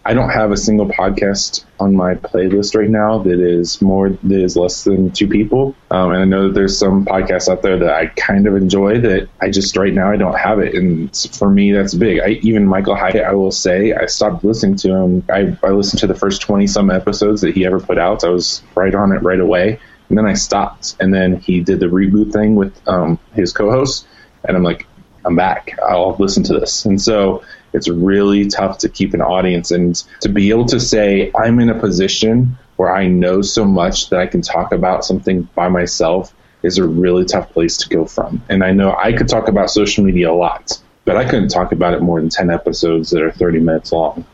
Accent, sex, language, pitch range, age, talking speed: American, male, English, 90-105 Hz, 20-39, 235 wpm